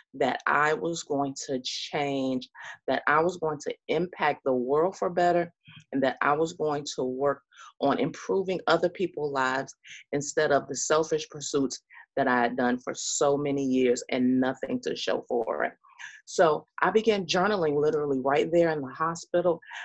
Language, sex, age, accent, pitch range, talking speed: English, female, 30-49, American, 140-175 Hz, 170 wpm